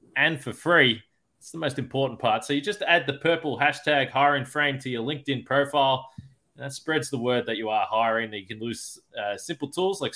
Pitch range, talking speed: 115-145 Hz, 220 wpm